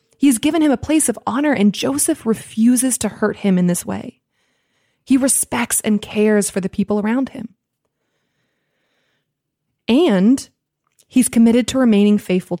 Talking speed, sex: 150 wpm, female